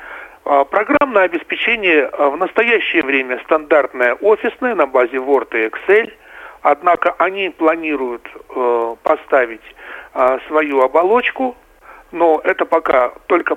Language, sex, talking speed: Russian, male, 105 wpm